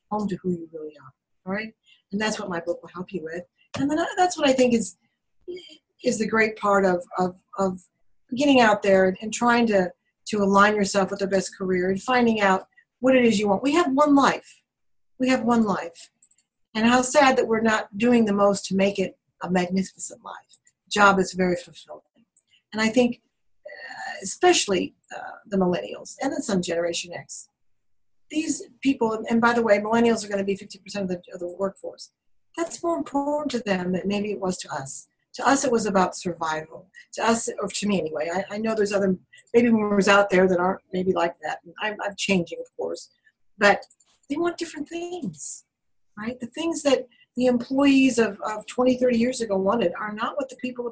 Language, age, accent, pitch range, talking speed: English, 50-69, American, 190-255 Hz, 200 wpm